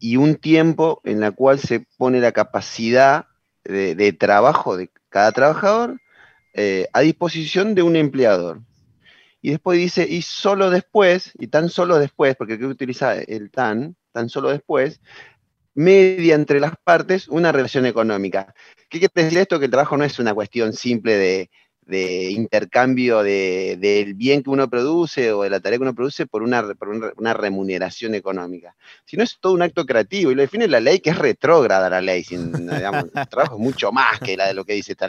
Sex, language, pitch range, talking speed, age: male, Spanish, 105-160 Hz, 195 wpm, 30-49